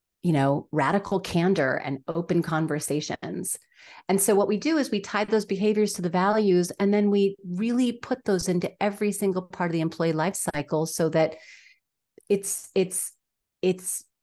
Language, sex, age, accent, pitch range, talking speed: English, female, 30-49, American, 155-195 Hz, 170 wpm